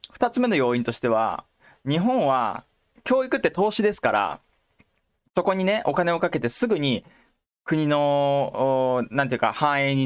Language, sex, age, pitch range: Japanese, male, 20-39, 125-205 Hz